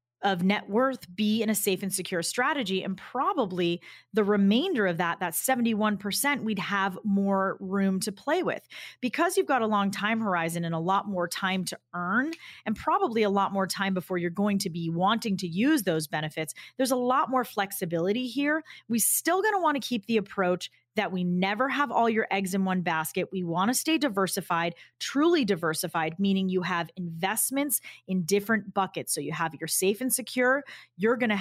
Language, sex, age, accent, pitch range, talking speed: English, female, 30-49, American, 185-235 Hz, 200 wpm